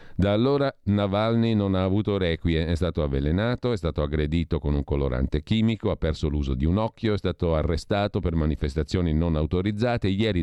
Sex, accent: male, native